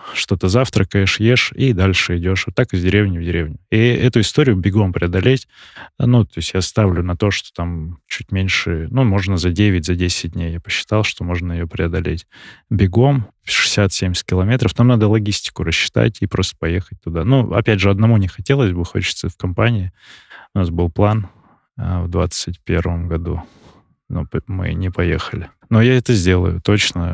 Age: 20-39